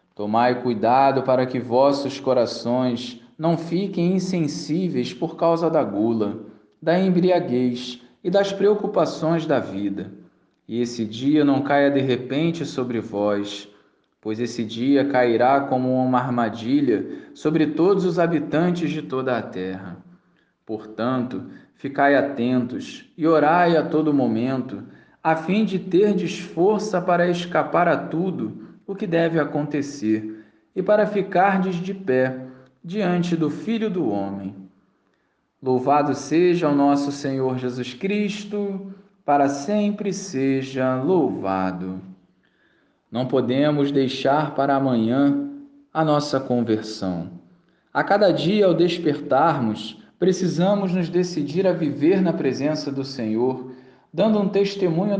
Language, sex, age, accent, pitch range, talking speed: Portuguese, male, 20-39, Brazilian, 125-175 Hz, 120 wpm